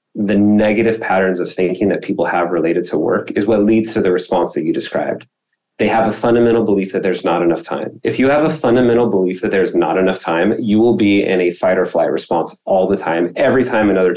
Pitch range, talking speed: 100-115 Hz, 235 wpm